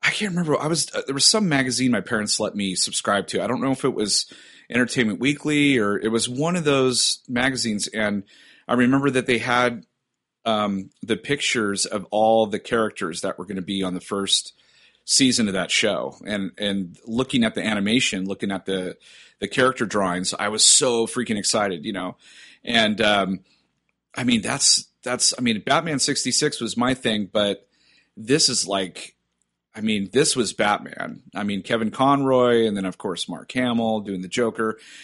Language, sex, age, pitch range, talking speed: English, male, 30-49, 95-130 Hz, 190 wpm